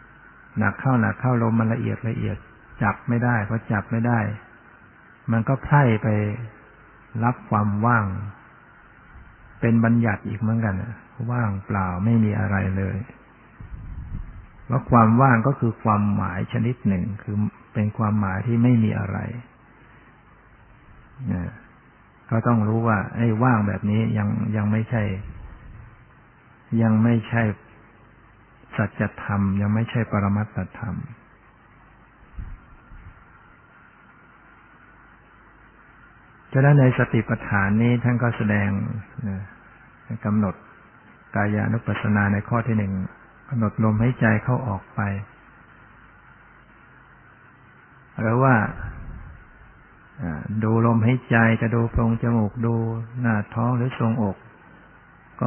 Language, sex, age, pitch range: Thai, male, 60-79, 105-120 Hz